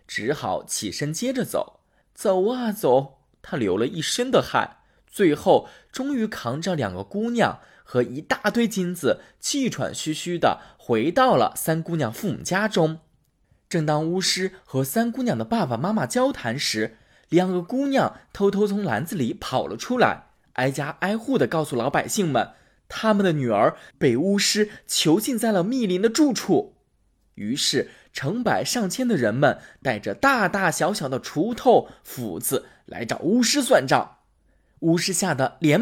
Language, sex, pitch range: Chinese, male, 155-245 Hz